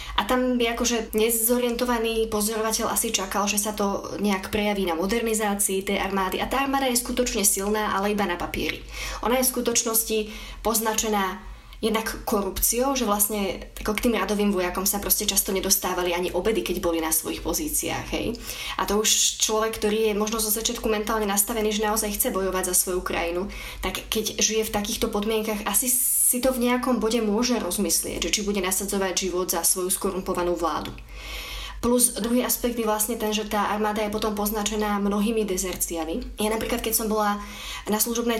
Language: Slovak